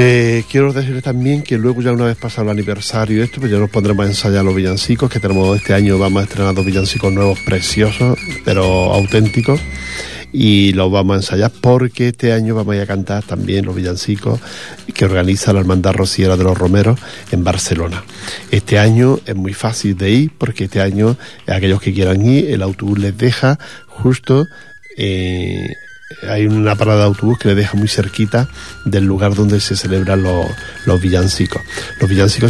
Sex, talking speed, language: male, 185 wpm, Portuguese